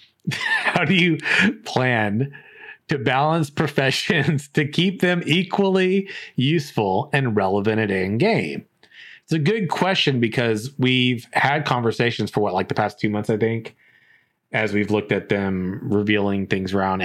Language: English